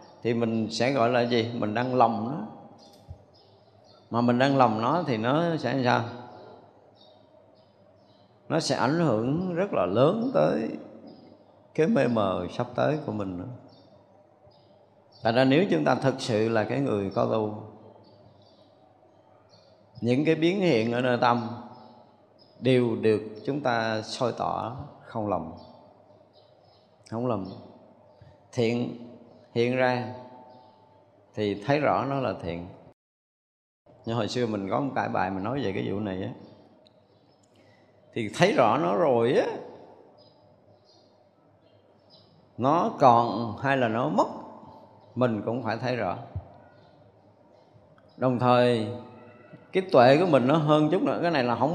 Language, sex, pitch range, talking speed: Vietnamese, male, 105-130 Hz, 140 wpm